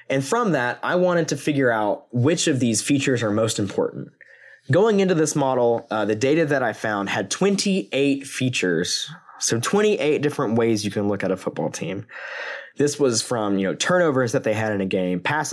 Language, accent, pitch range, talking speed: English, American, 105-145 Hz, 200 wpm